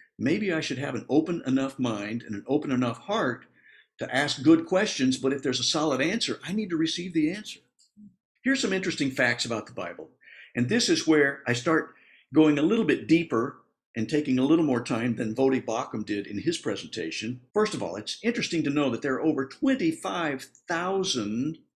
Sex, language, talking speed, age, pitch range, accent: male, English, 200 wpm, 60-79, 125-180 Hz, American